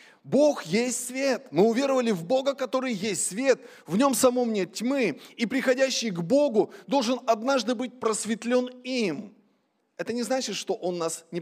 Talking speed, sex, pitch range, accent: 165 wpm, male, 160-230 Hz, native